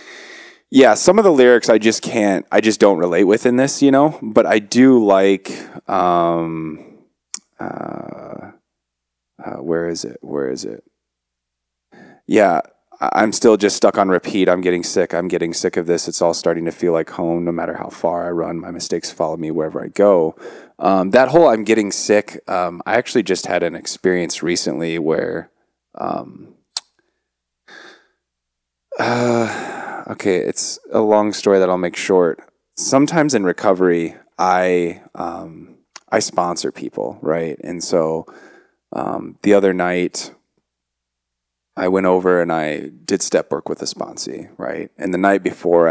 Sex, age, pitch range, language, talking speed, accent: male, 20-39, 80-110 Hz, English, 160 wpm, American